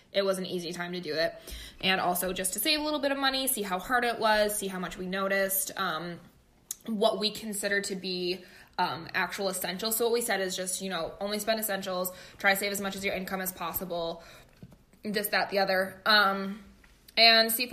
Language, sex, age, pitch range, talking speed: English, female, 20-39, 185-225 Hz, 225 wpm